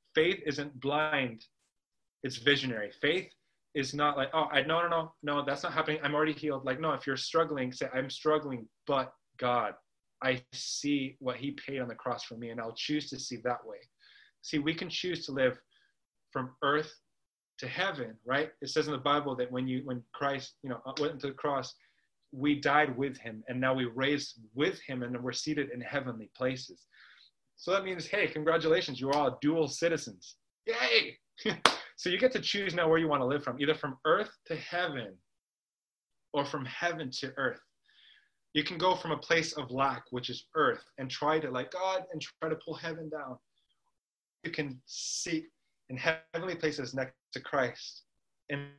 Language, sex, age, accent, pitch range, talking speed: English, male, 20-39, American, 130-160 Hz, 190 wpm